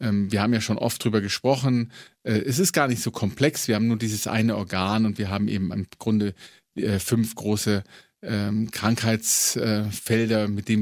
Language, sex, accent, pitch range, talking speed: German, male, German, 100-120 Hz, 165 wpm